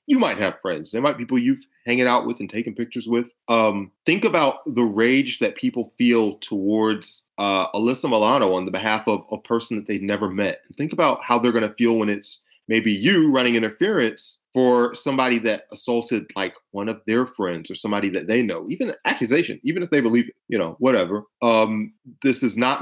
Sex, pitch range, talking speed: male, 100-120 Hz, 210 wpm